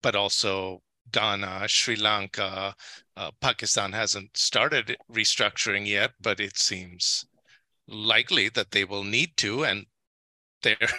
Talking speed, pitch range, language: 120 wpm, 110-145 Hz, English